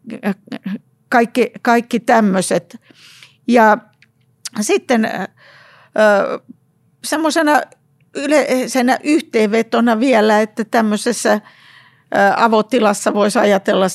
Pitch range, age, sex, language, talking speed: 180-230 Hz, 50-69, female, Finnish, 55 wpm